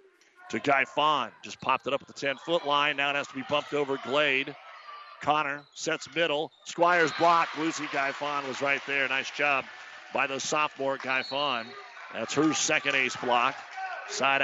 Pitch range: 135-175 Hz